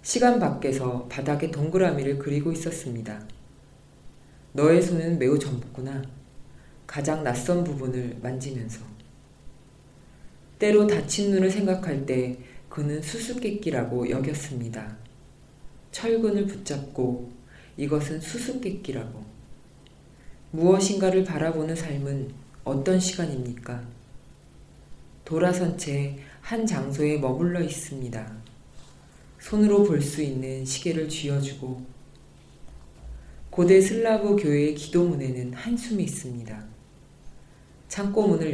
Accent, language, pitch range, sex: native, Korean, 125-175 Hz, female